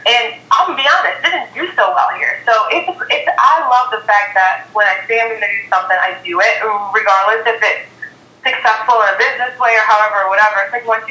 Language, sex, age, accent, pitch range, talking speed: English, female, 20-39, American, 190-230 Hz, 245 wpm